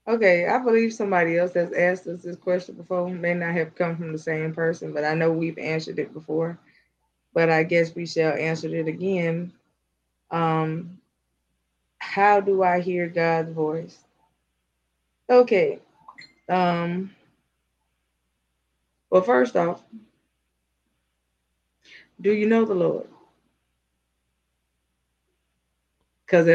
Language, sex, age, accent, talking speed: English, female, 20-39, American, 120 wpm